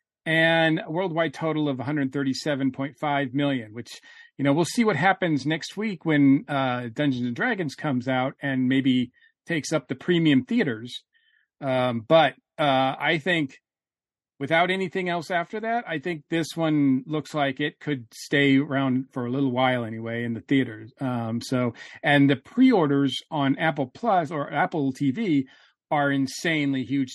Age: 40-59